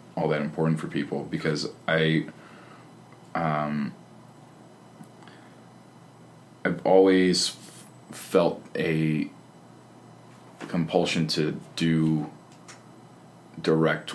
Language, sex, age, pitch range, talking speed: English, male, 20-39, 75-85 Hz, 70 wpm